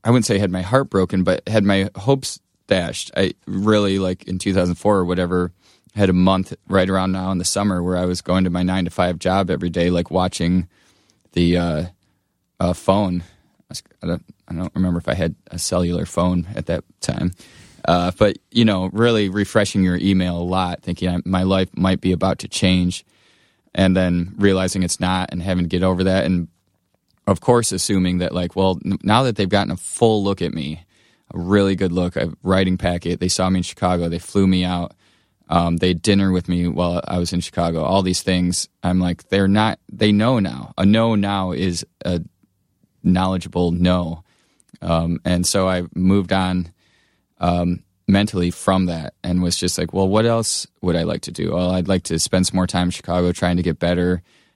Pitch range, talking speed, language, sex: 90-95 Hz, 200 wpm, English, male